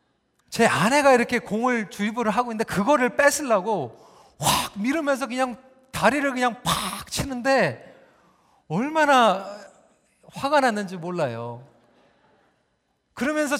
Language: Korean